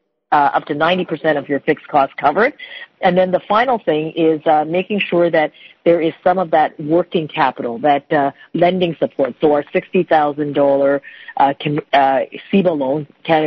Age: 40-59